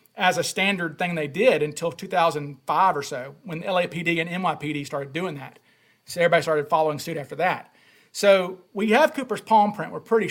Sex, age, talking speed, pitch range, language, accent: male, 40-59, 185 wpm, 160-215 Hz, English, American